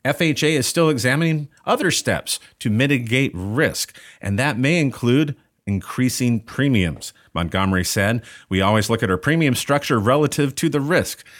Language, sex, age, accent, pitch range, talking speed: English, male, 40-59, American, 100-140 Hz, 145 wpm